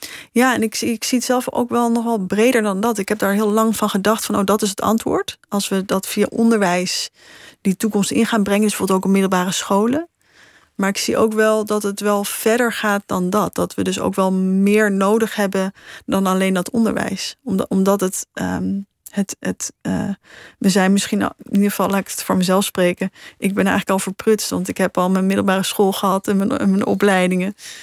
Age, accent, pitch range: 20-39, Dutch, 190-220 Hz